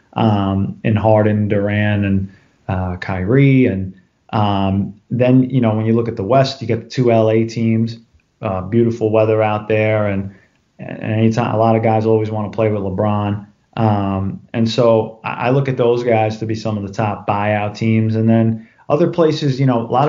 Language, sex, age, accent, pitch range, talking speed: English, male, 30-49, American, 105-115 Hz, 195 wpm